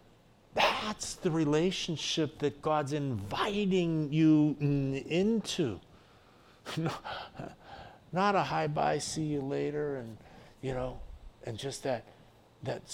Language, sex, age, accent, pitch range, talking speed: English, male, 60-79, American, 110-150 Hz, 100 wpm